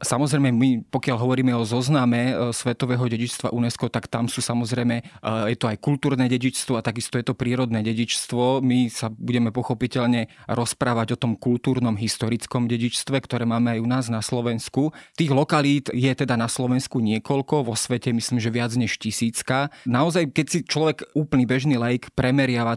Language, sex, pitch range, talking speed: Slovak, male, 120-135 Hz, 165 wpm